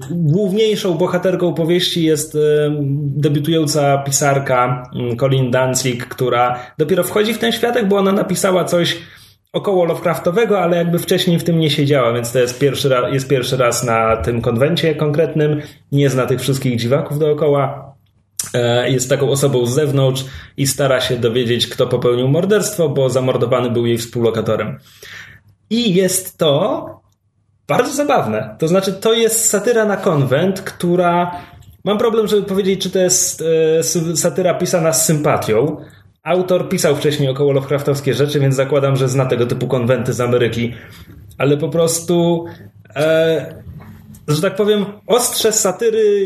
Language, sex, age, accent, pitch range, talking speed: Polish, male, 20-39, native, 125-180 Hz, 140 wpm